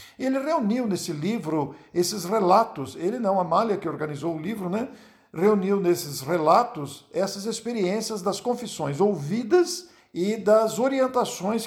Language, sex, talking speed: Portuguese, male, 135 wpm